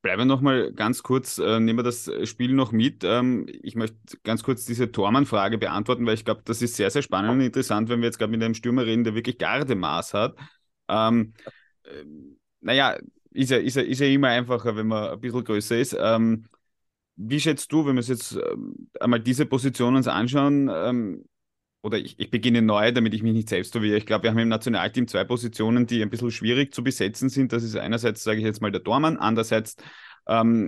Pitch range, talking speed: 110-125 Hz, 220 wpm